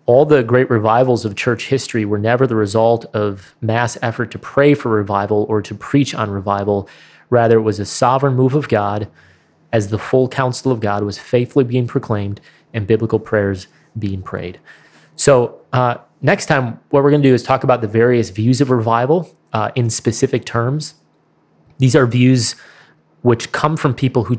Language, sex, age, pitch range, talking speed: English, male, 30-49, 105-130 Hz, 185 wpm